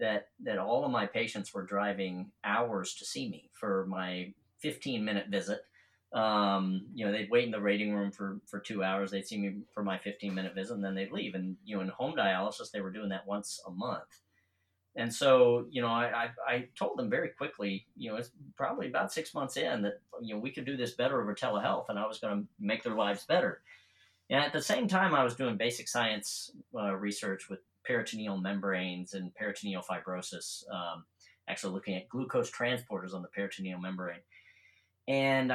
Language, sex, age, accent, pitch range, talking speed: English, male, 40-59, American, 95-125 Hz, 205 wpm